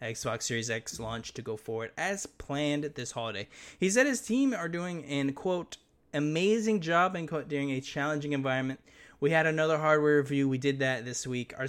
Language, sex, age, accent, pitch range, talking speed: English, male, 20-39, American, 120-145 Hz, 190 wpm